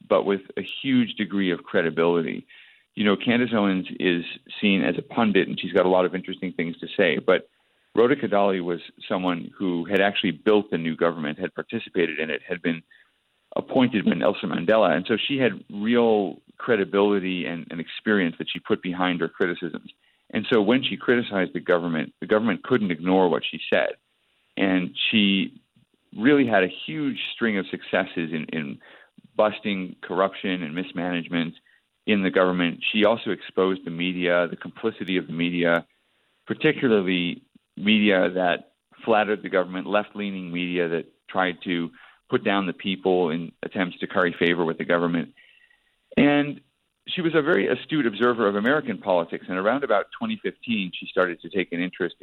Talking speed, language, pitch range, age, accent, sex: 170 wpm, English, 85-105 Hz, 40-59, American, male